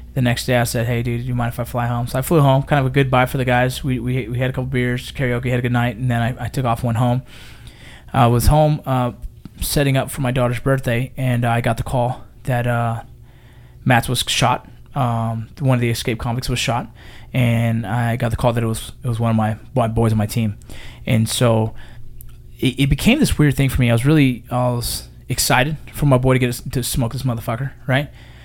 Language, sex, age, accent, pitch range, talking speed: English, male, 20-39, American, 115-130 Hz, 250 wpm